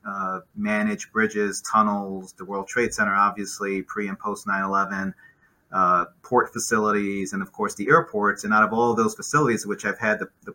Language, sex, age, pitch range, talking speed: English, male, 30-49, 95-110 Hz, 175 wpm